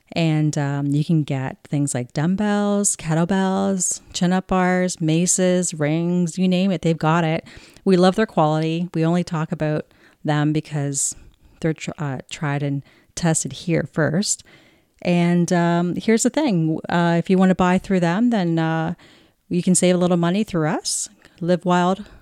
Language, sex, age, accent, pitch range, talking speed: English, female, 40-59, American, 155-195 Hz, 165 wpm